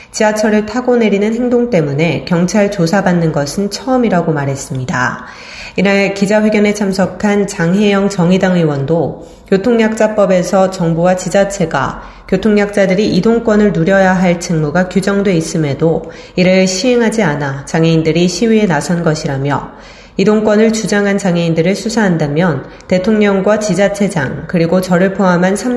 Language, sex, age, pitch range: Korean, female, 30-49, 165-215 Hz